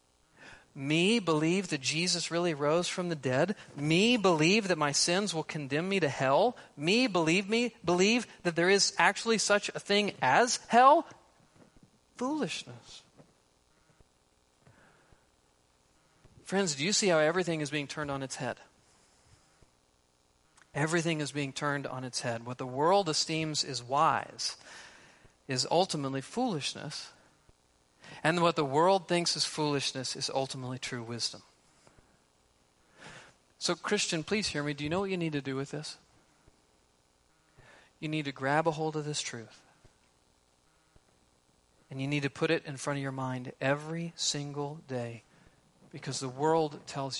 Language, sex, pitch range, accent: English, male, 120-165 Hz, American